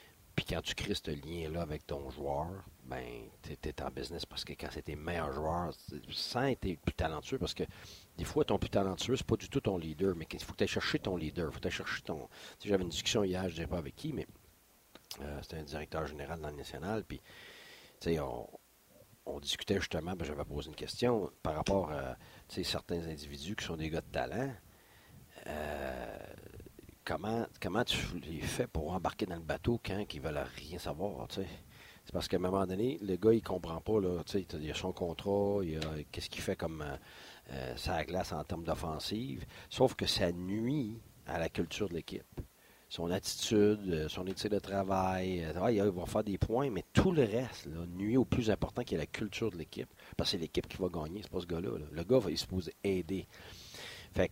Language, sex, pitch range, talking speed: French, male, 80-105 Hz, 220 wpm